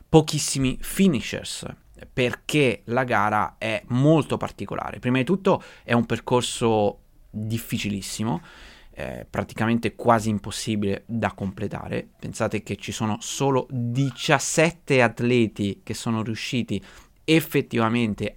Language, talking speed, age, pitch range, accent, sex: Italian, 105 wpm, 30-49, 110-145 Hz, native, male